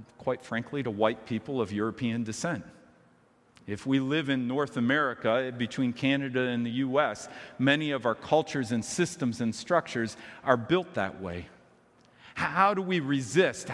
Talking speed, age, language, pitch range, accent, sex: 155 wpm, 50-69, English, 125-160 Hz, American, male